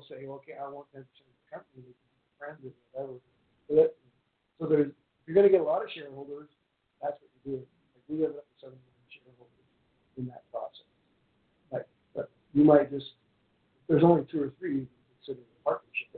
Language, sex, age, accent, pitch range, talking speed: English, male, 50-69, American, 125-145 Hz, 200 wpm